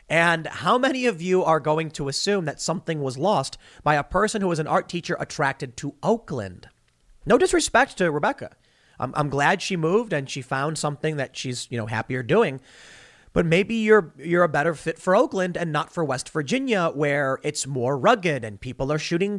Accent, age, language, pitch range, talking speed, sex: American, 30-49, English, 140-195 Hz, 200 wpm, male